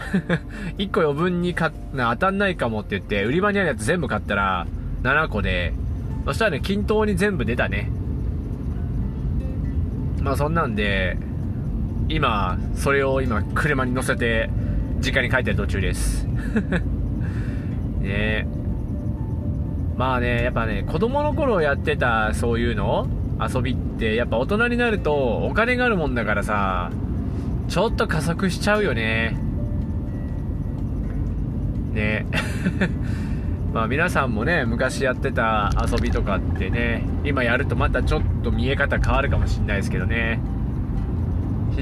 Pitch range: 95-145 Hz